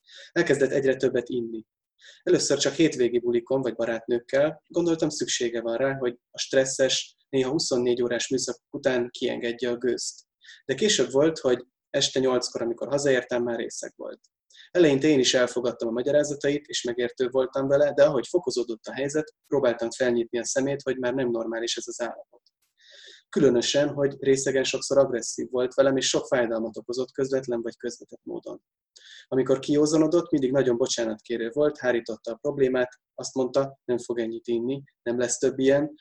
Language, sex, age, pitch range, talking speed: Hungarian, male, 20-39, 120-140 Hz, 160 wpm